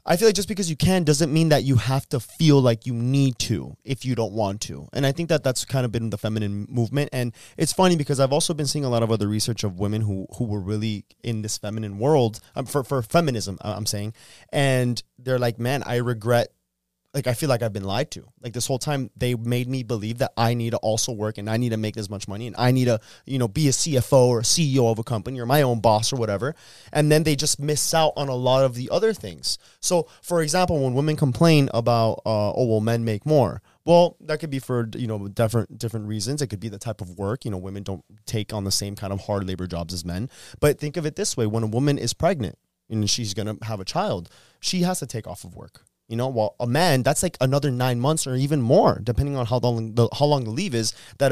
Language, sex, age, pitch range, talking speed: English, male, 20-39, 110-145 Hz, 265 wpm